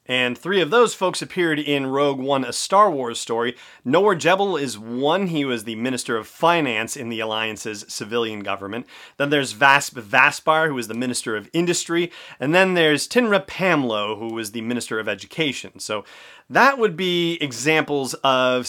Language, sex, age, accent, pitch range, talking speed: English, male, 30-49, American, 115-150 Hz, 175 wpm